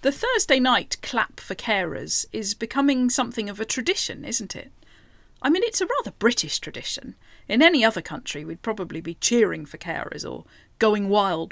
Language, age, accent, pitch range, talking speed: English, 40-59, British, 175-250 Hz, 175 wpm